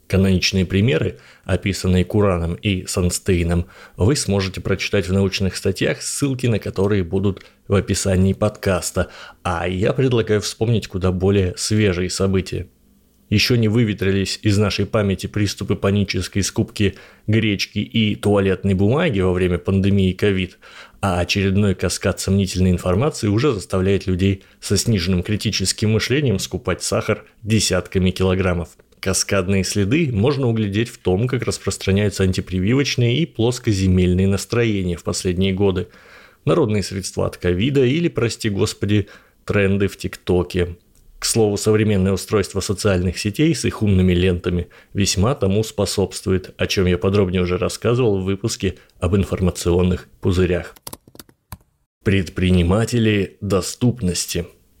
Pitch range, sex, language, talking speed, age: 90-105 Hz, male, Russian, 120 wpm, 30-49